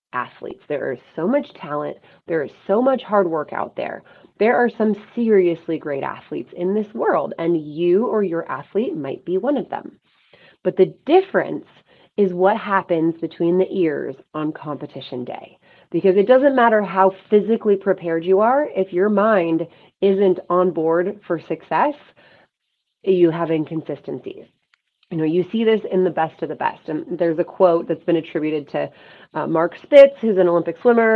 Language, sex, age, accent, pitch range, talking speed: English, female, 30-49, American, 165-210 Hz, 175 wpm